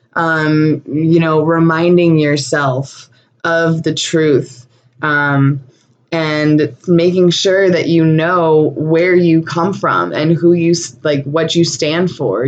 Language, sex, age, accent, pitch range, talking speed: English, female, 20-39, American, 150-170 Hz, 130 wpm